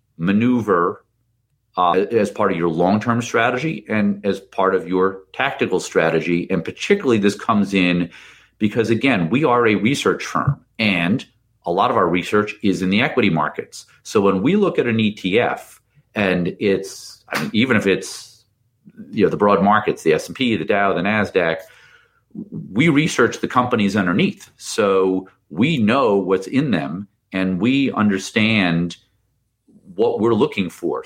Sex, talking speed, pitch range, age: male, 155 wpm, 95-115 Hz, 40-59